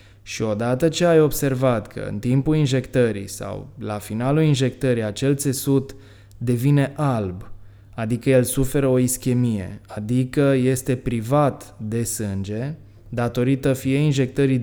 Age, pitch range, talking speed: 20-39, 110-135 Hz, 125 wpm